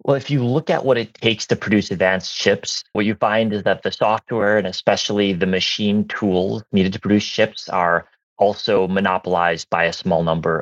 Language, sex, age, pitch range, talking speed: English, male, 30-49, 90-105 Hz, 200 wpm